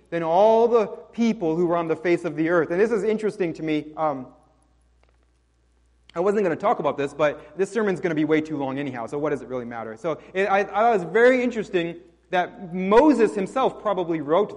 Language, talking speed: English, 230 wpm